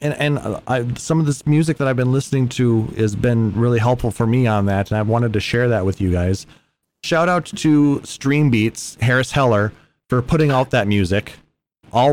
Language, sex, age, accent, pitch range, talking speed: English, male, 30-49, American, 100-125 Hz, 210 wpm